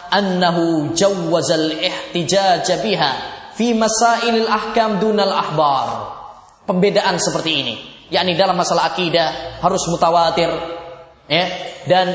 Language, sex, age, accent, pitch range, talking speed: Romanian, male, 10-29, Indonesian, 175-245 Hz, 85 wpm